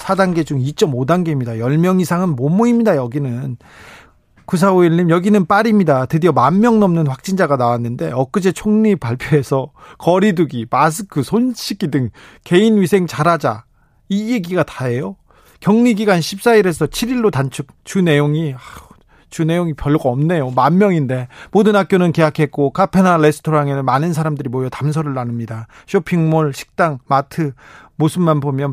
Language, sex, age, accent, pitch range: Korean, male, 40-59, native, 135-185 Hz